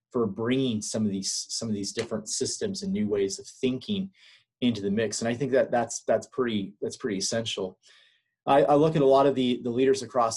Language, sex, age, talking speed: English, male, 30-49, 225 wpm